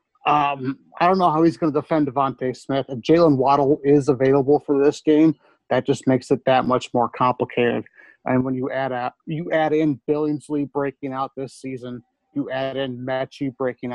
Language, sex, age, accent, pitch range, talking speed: English, male, 30-49, American, 125-150 Hz, 195 wpm